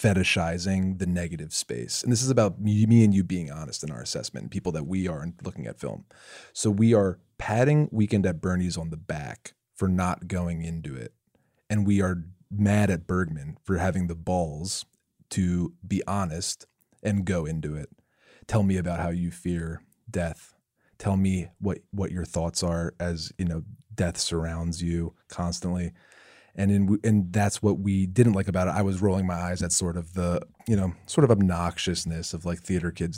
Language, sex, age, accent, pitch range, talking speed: English, male, 30-49, American, 85-105 Hz, 190 wpm